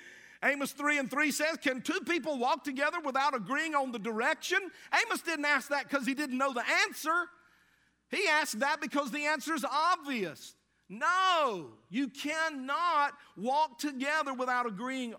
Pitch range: 195-275 Hz